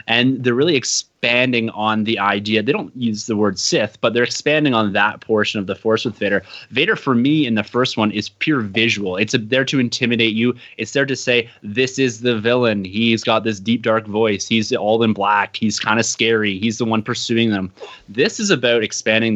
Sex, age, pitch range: male, 20-39, 110-130 Hz